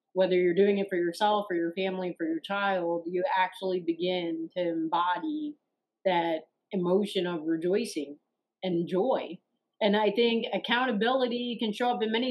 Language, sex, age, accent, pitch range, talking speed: English, female, 40-59, American, 190-250 Hz, 155 wpm